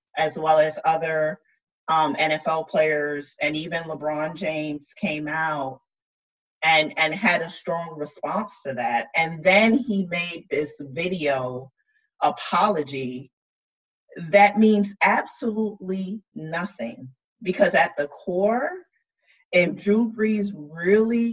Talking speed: 115 wpm